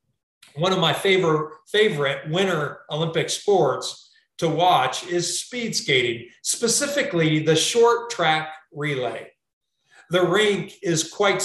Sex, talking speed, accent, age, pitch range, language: male, 115 wpm, American, 40-59, 155-235 Hz, English